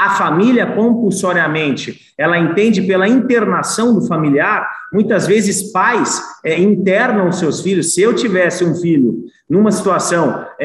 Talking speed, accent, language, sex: 125 wpm, Brazilian, Portuguese, male